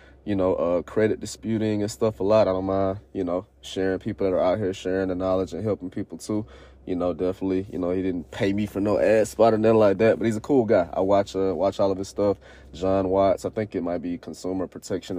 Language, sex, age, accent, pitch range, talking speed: English, male, 20-39, American, 95-110 Hz, 260 wpm